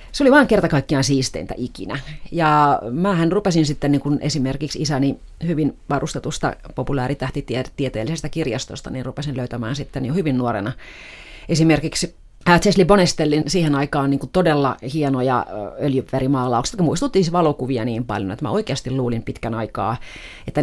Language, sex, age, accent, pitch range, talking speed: Finnish, female, 30-49, native, 130-160 Hz, 135 wpm